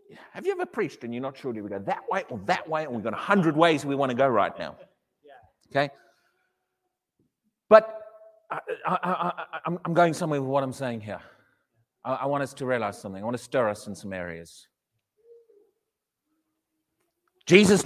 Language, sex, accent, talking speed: English, male, British, 180 wpm